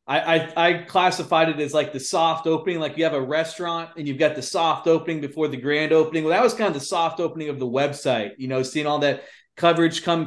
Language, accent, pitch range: English, American, 145-175 Hz